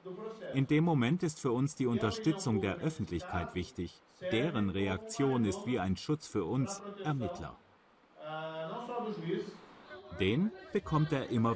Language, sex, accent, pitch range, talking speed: German, male, German, 100-130 Hz, 125 wpm